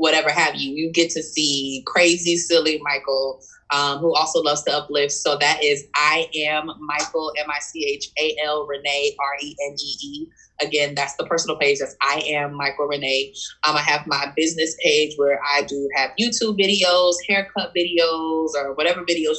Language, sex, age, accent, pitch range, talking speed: English, female, 20-39, American, 145-170 Hz, 190 wpm